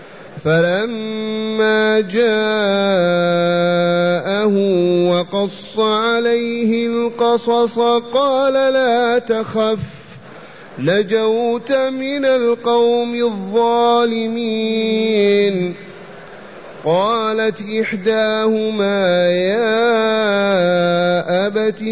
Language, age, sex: Arabic, 30-49, male